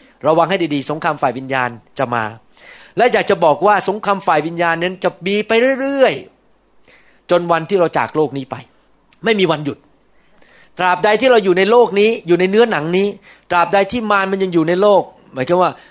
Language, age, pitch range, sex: Thai, 30-49, 150-210 Hz, male